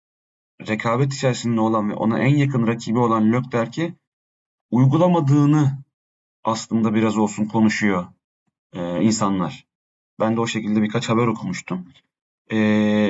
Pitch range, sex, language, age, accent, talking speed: 110-140 Hz, male, Turkish, 40-59, native, 115 wpm